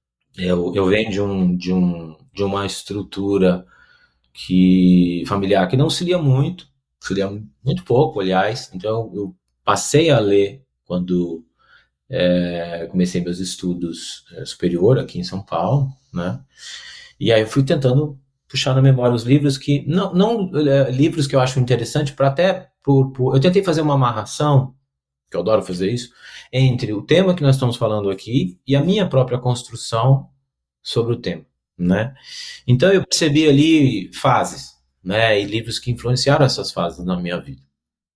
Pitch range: 95-140 Hz